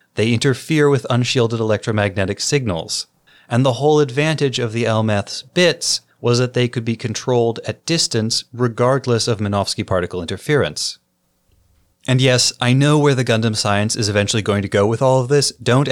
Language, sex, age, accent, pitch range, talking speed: English, male, 30-49, American, 110-140 Hz, 170 wpm